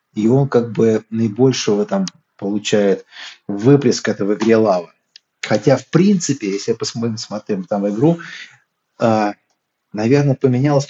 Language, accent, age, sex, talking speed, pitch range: Russian, native, 30-49, male, 120 wpm, 105-130 Hz